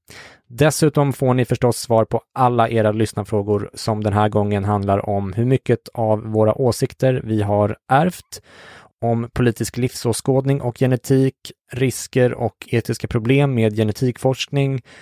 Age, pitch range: 20-39, 105-130 Hz